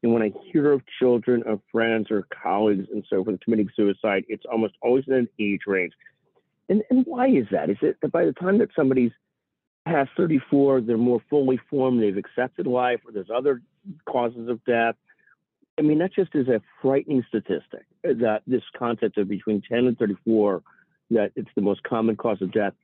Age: 50-69